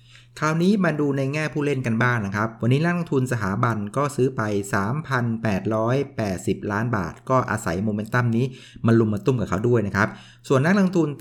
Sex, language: male, Thai